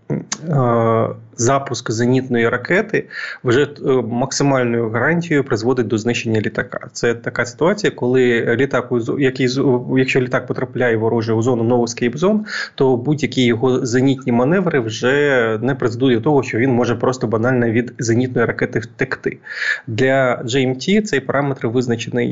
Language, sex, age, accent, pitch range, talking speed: Ukrainian, male, 20-39, native, 120-135 Hz, 120 wpm